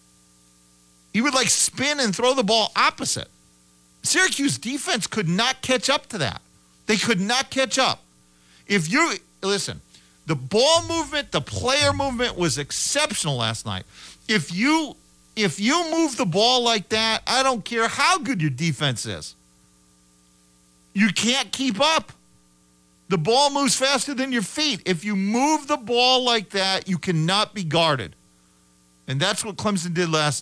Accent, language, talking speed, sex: American, English, 160 wpm, male